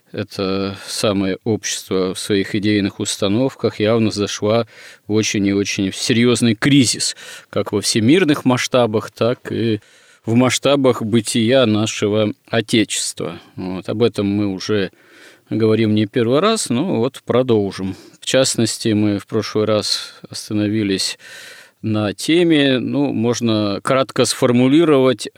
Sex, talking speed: male, 120 wpm